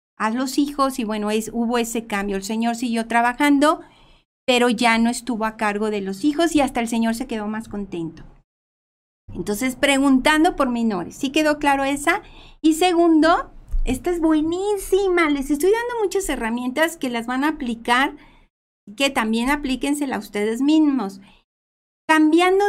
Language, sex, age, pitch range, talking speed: Spanish, female, 40-59, 235-310 Hz, 160 wpm